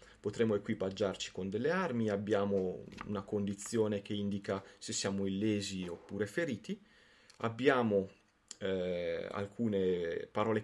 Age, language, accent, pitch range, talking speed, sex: 30-49, Italian, native, 100-130 Hz, 105 wpm, male